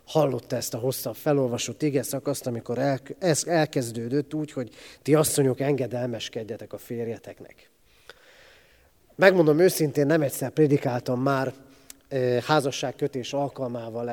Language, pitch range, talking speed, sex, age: Hungarian, 120-150 Hz, 110 wpm, male, 30-49